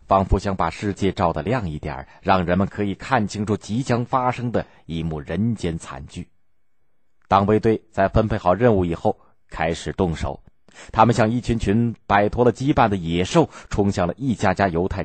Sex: male